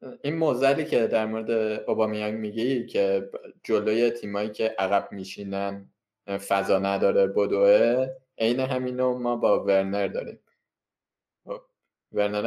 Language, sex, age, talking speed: Persian, male, 20-39, 110 wpm